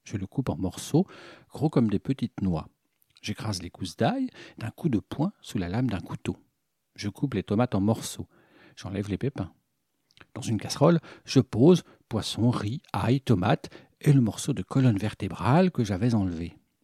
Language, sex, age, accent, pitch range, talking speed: French, male, 60-79, French, 95-140 Hz, 180 wpm